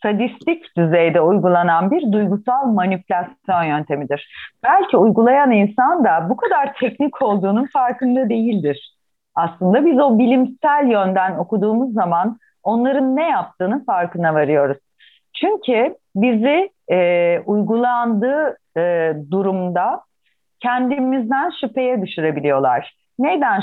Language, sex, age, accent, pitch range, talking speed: Turkish, female, 40-59, native, 175-255 Hz, 100 wpm